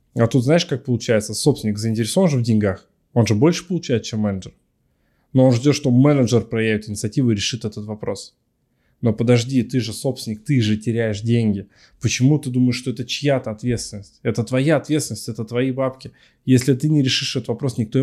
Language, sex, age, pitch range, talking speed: Russian, male, 20-39, 110-135 Hz, 185 wpm